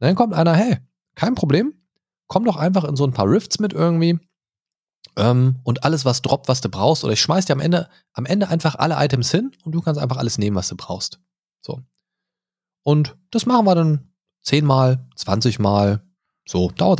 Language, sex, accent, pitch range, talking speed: German, male, German, 110-165 Hz, 200 wpm